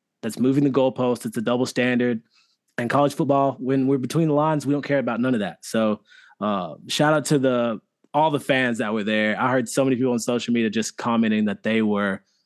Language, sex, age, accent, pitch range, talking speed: English, male, 20-39, American, 120-145 Hz, 230 wpm